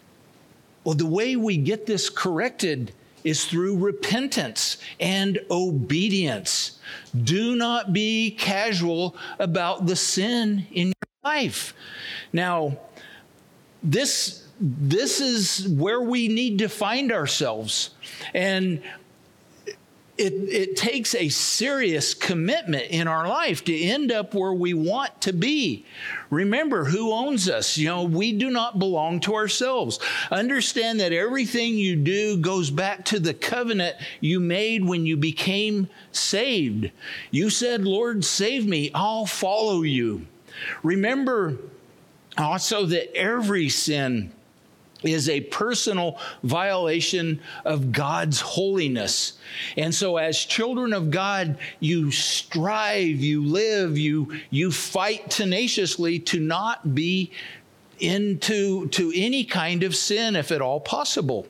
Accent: American